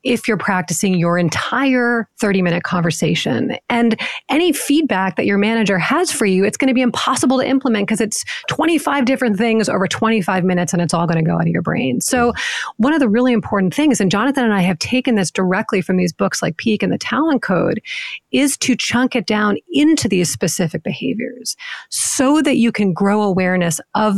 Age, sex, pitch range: 30-49, female, 185-245 Hz